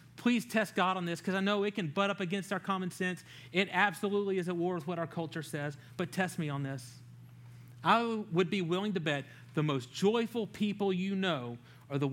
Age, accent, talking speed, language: 40-59, American, 225 wpm, English